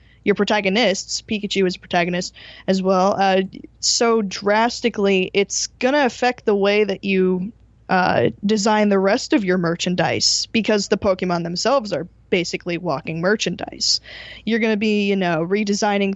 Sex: female